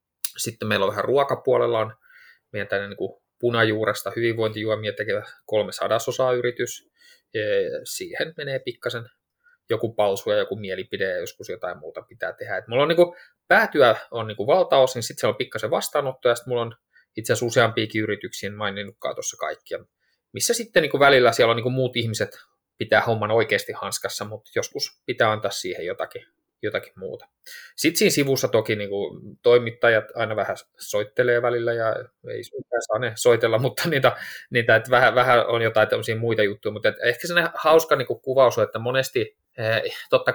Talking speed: 165 wpm